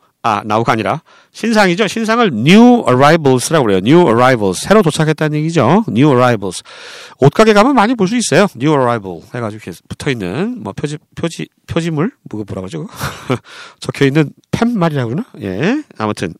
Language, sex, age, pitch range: Korean, male, 40-59, 140-220 Hz